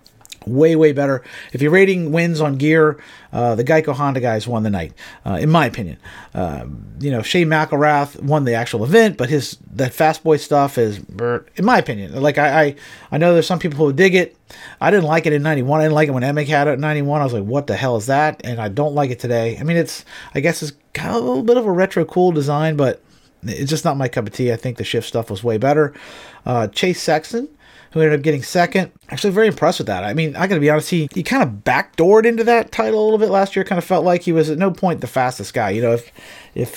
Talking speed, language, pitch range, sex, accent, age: 265 wpm, English, 125-165 Hz, male, American, 40-59